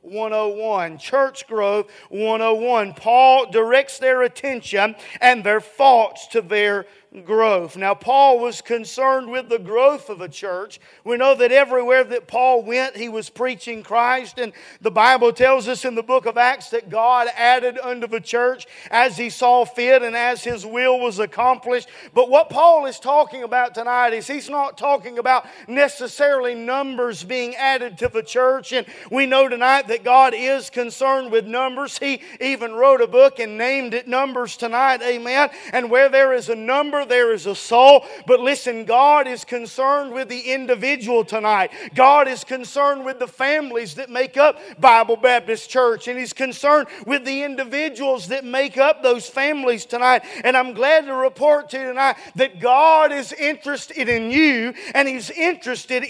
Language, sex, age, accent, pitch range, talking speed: English, male, 40-59, American, 235-270 Hz, 175 wpm